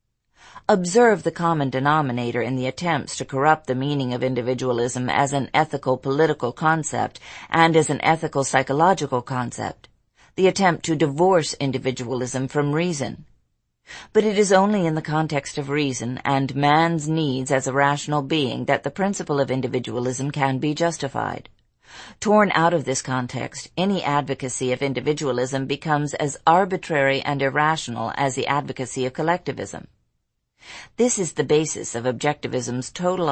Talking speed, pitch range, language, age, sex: 140 wpm, 130-160 Hz, English, 40-59, female